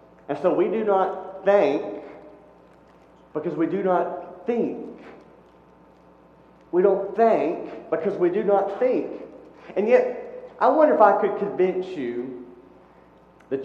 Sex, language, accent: male, English, American